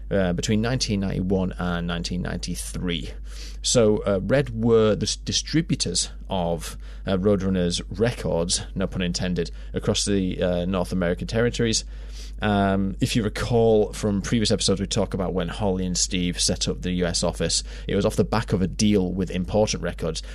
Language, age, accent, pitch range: English, 30-49, British, 90-105 Hz